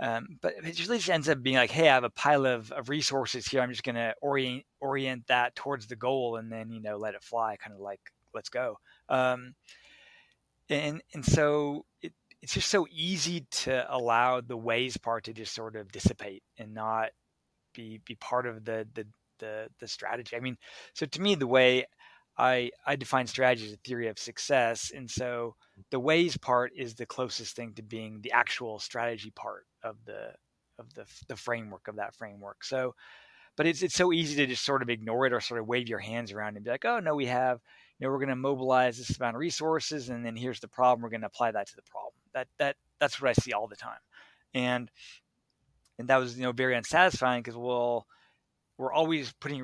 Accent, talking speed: American, 220 wpm